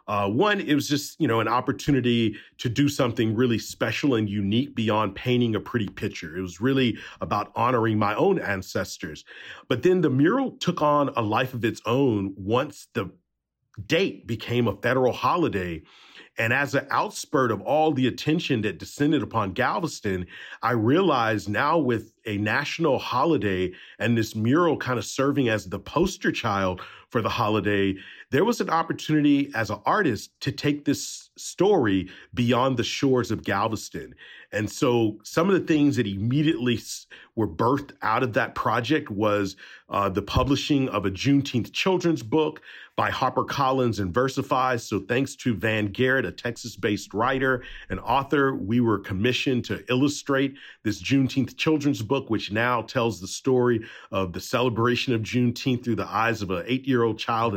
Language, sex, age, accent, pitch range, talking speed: English, male, 40-59, American, 105-140 Hz, 165 wpm